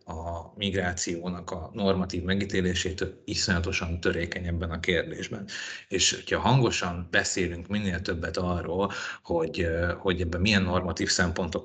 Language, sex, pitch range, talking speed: Hungarian, male, 90-100 Hz, 120 wpm